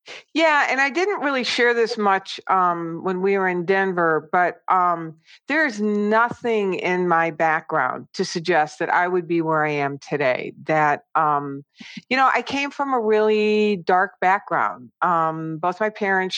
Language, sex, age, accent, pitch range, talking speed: English, female, 50-69, American, 160-210 Hz, 170 wpm